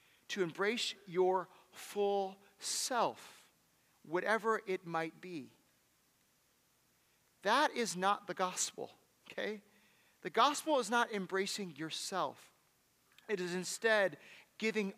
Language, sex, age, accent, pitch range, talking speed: English, male, 40-59, American, 170-240 Hz, 100 wpm